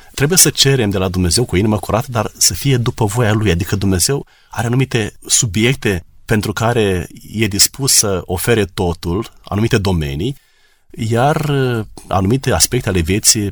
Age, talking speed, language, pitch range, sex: 30-49, 155 wpm, Romanian, 90-120 Hz, male